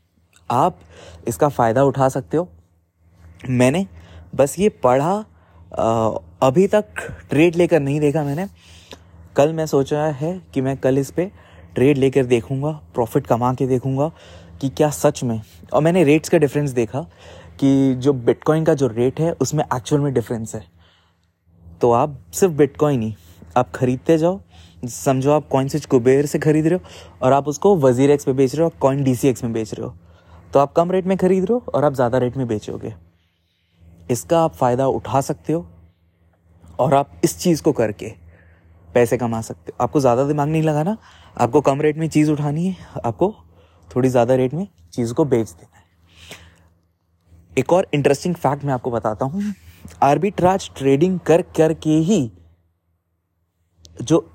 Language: English